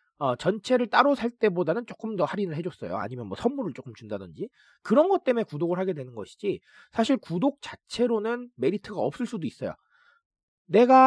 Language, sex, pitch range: Korean, male, 170-245 Hz